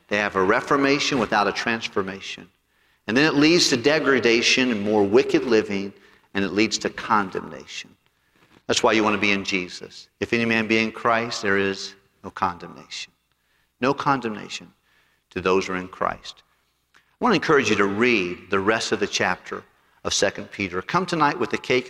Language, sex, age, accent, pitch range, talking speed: English, male, 50-69, American, 105-155 Hz, 180 wpm